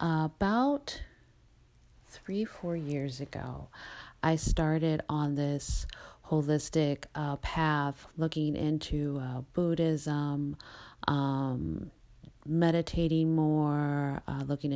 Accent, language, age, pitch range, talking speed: American, English, 40-59, 140-160 Hz, 85 wpm